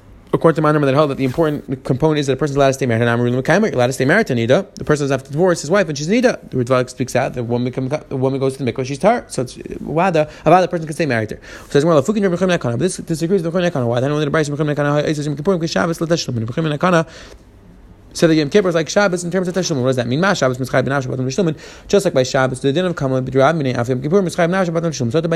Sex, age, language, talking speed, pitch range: male, 30-49, English, 235 wpm, 135-180 Hz